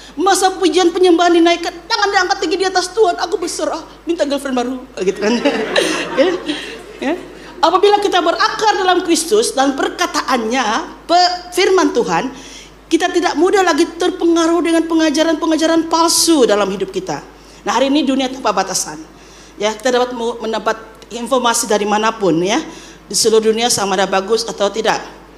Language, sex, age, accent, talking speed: English, female, 40-59, Indonesian, 140 wpm